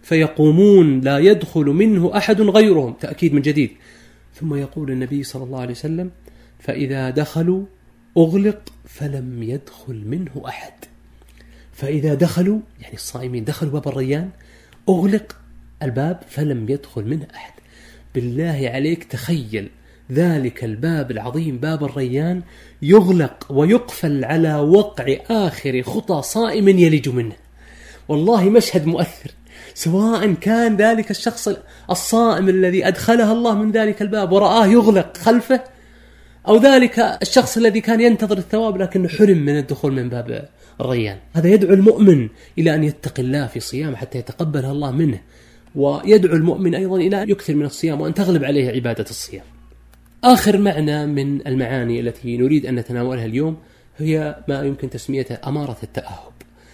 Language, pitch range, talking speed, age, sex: Arabic, 130-195 Hz, 130 wpm, 30-49, male